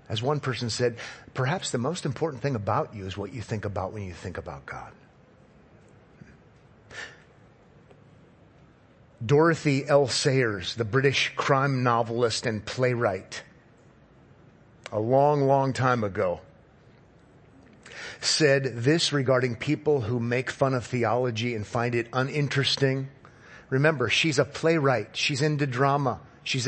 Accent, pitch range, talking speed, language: American, 120-175 Hz, 125 wpm, English